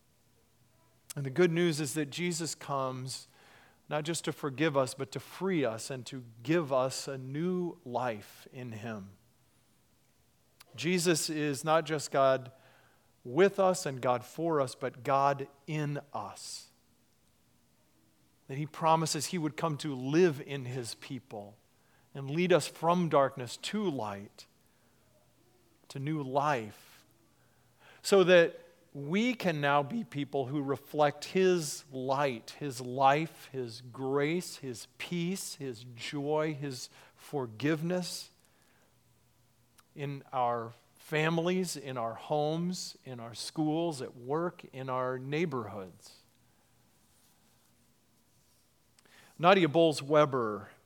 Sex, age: male, 40-59